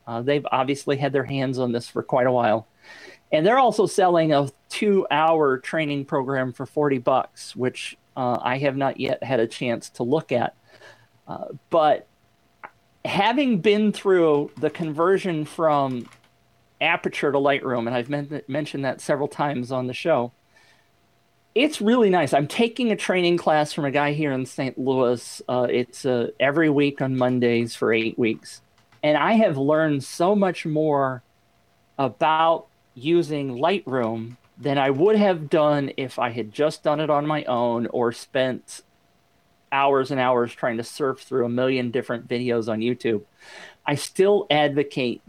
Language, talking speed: English, 165 wpm